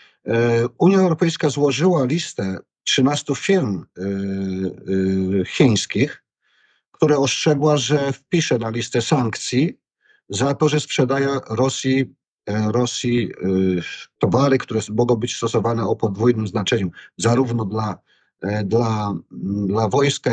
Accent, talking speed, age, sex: native, 95 wpm, 50-69, male